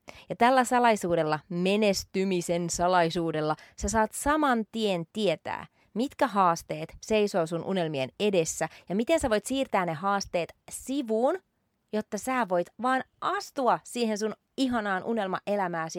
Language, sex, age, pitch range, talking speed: Finnish, female, 30-49, 170-240 Hz, 125 wpm